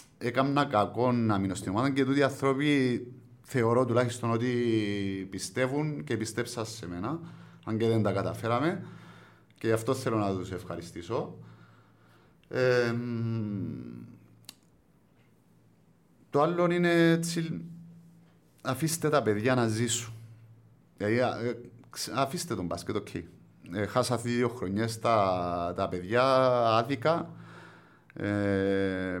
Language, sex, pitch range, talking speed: Greek, male, 105-135 Hz, 100 wpm